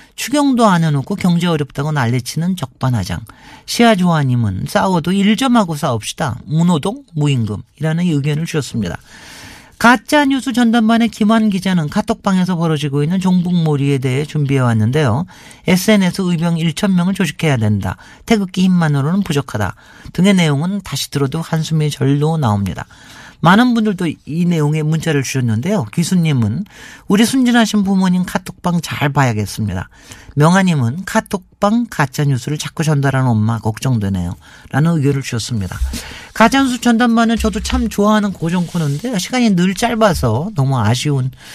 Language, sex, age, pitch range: Korean, male, 40-59, 130-195 Hz